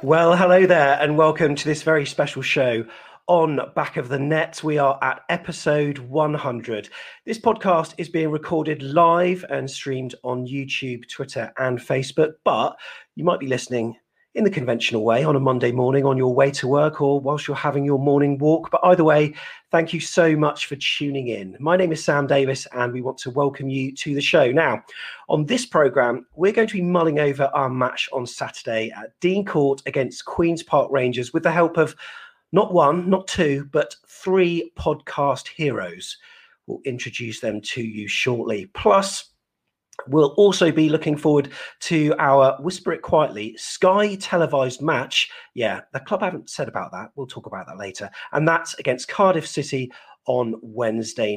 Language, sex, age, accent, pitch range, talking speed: English, male, 40-59, British, 125-165 Hz, 180 wpm